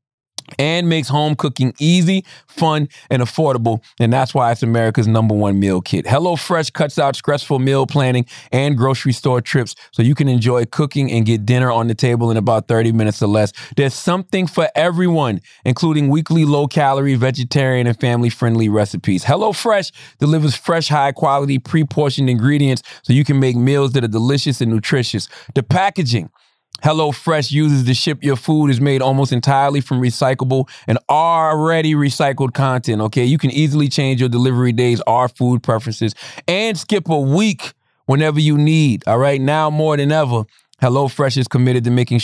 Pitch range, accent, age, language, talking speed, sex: 115-145 Hz, American, 30-49, English, 170 wpm, male